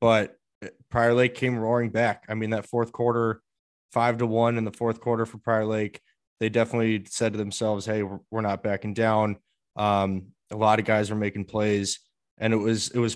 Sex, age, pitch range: male, 20-39, 105-115 Hz